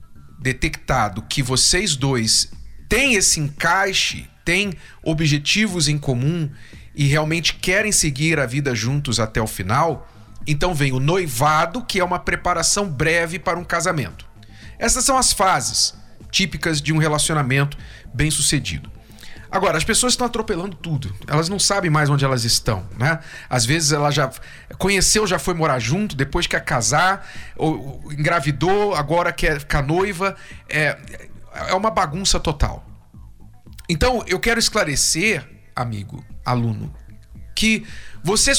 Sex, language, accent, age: male, Portuguese, Brazilian, 40-59